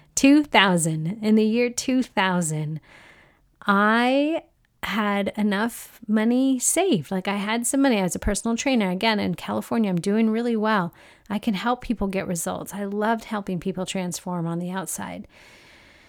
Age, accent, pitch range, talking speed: 40-59, American, 190-230 Hz, 150 wpm